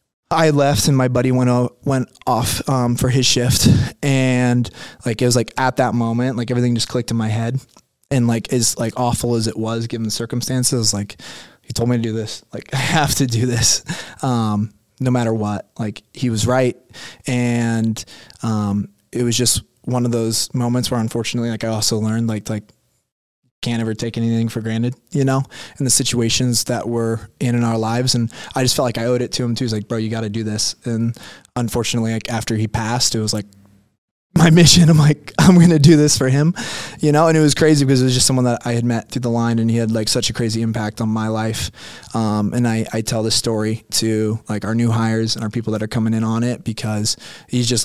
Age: 20-39